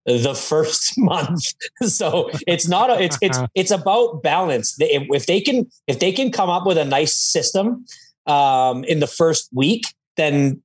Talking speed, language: 170 wpm, English